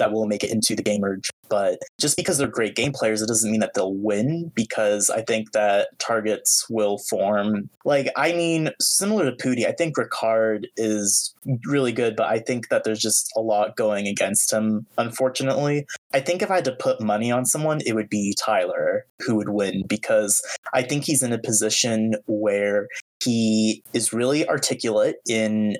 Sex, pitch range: male, 105-130 Hz